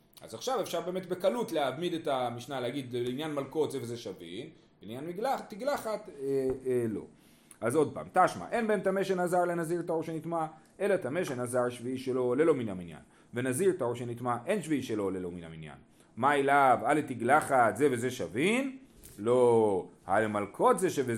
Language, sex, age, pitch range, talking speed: Hebrew, male, 30-49, 125-195 Hz, 180 wpm